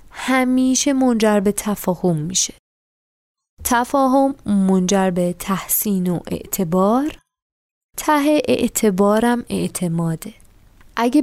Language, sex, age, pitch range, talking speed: Persian, female, 20-39, 175-235 Hz, 80 wpm